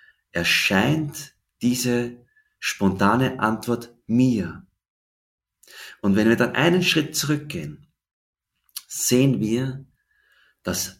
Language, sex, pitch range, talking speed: English, male, 105-130 Hz, 80 wpm